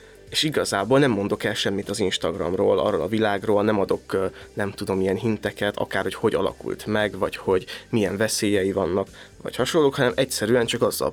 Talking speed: 180 wpm